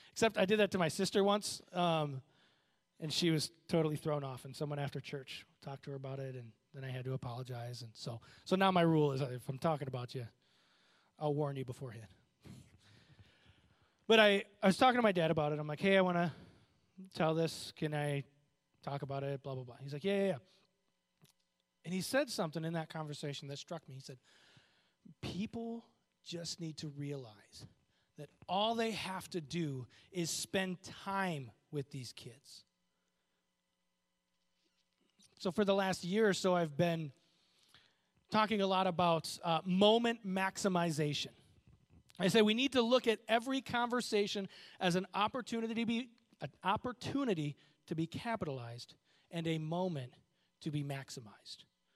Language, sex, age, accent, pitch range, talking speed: English, male, 20-39, American, 145-195 Hz, 170 wpm